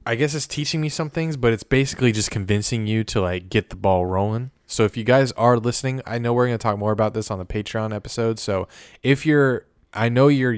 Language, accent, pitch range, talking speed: English, American, 95-115 Hz, 250 wpm